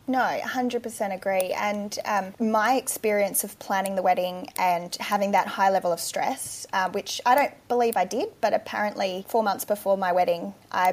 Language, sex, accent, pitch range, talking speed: English, female, Australian, 185-210 Hz, 180 wpm